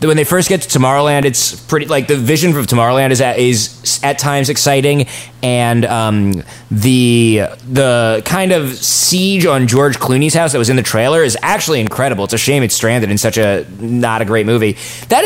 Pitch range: 115-145 Hz